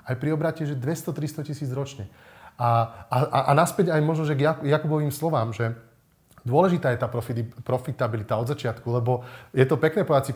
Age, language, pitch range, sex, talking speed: 30-49, Slovak, 120-150 Hz, male, 170 wpm